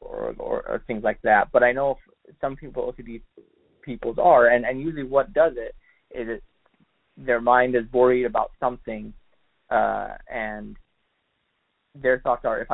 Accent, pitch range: American, 110-140 Hz